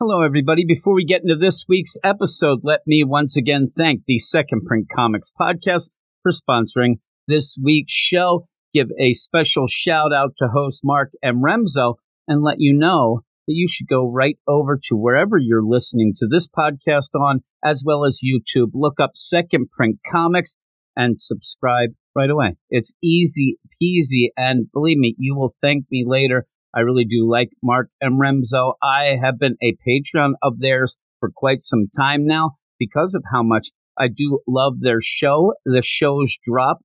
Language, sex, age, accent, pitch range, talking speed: English, male, 50-69, American, 125-160 Hz, 175 wpm